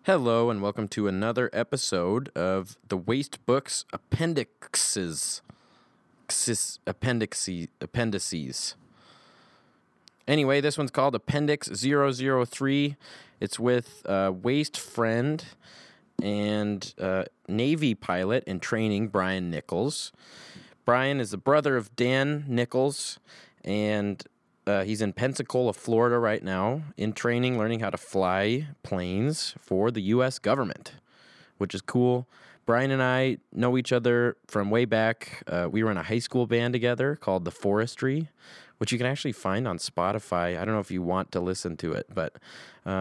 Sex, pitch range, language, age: male, 100-130 Hz, English, 20-39